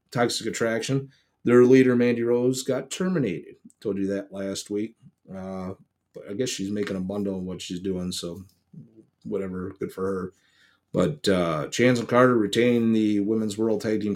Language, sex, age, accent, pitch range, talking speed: English, male, 30-49, American, 100-130 Hz, 170 wpm